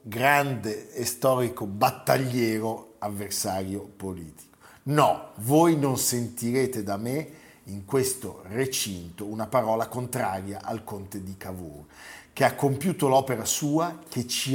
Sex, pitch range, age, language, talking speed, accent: male, 105-135 Hz, 50-69, Italian, 120 wpm, native